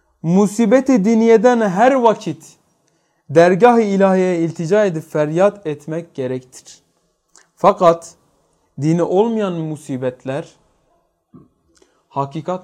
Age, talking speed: 30-49, 75 wpm